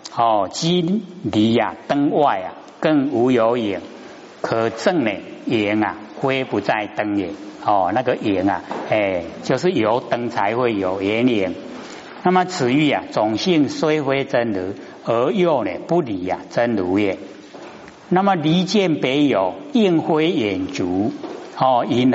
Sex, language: male, Chinese